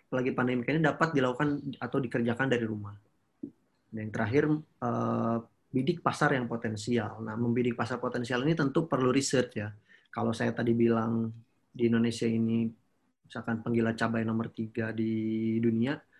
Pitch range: 115-140 Hz